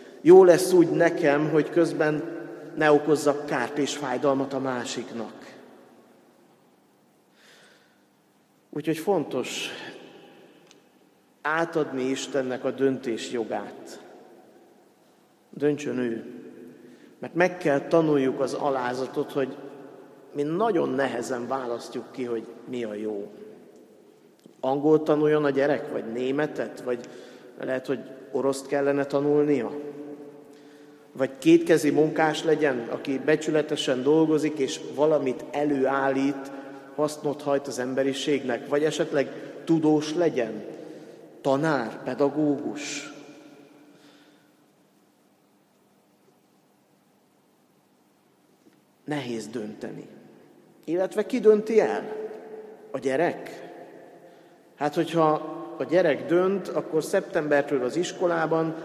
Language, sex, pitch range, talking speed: Hungarian, male, 135-155 Hz, 90 wpm